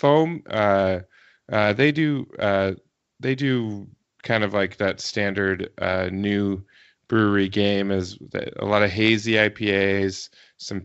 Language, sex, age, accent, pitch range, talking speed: English, male, 20-39, American, 95-110 Hz, 135 wpm